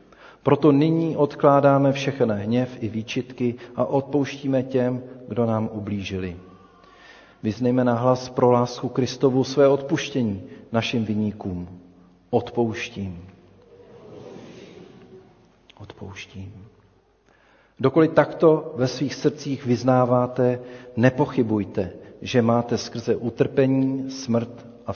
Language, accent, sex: Czech, native, male